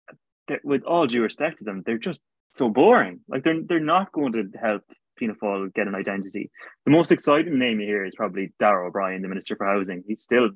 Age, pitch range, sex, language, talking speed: 20-39, 105-125 Hz, male, English, 215 wpm